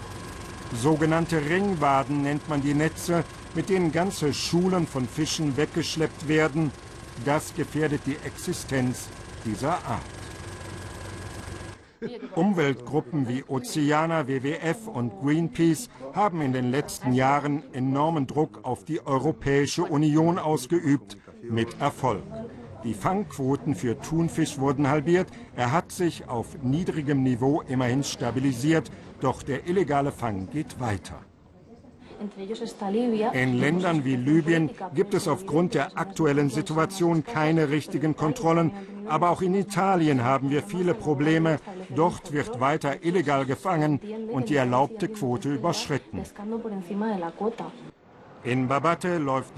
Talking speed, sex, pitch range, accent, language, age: 115 wpm, male, 130-165 Hz, German, German, 50-69